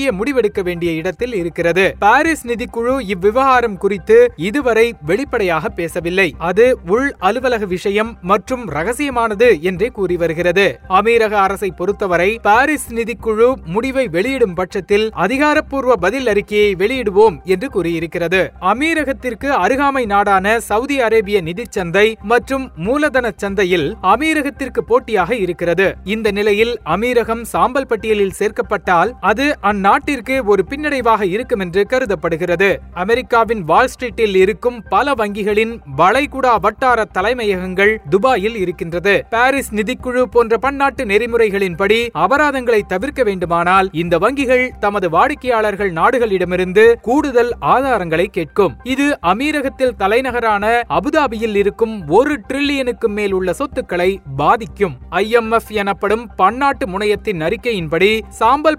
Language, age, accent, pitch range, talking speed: Tamil, 30-49, native, 195-260 Hz, 100 wpm